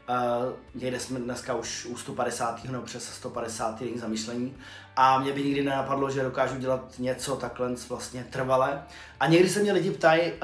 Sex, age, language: male, 20-39, Czech